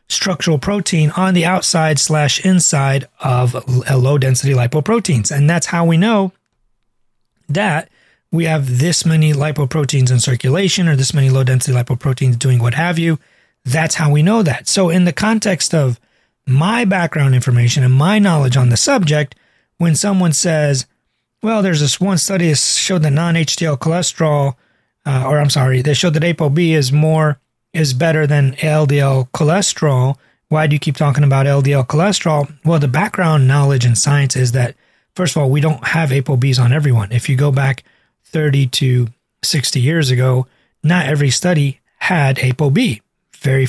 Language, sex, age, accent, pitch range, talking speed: English, male, 30-49, American, 130-165 Hz, 165 wpm